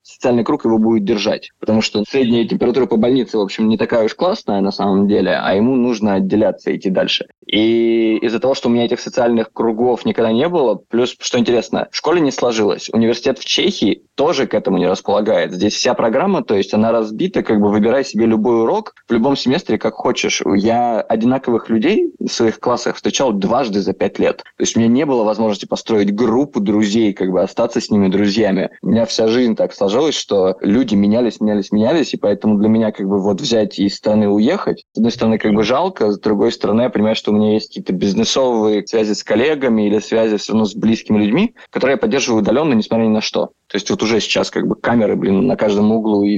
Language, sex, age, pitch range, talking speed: Russian, male, 20-39, 105-115 Hz, 220 wpm